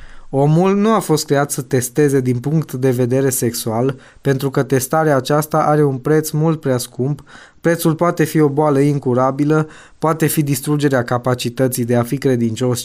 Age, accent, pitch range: 20-39, native, 125-145 Hz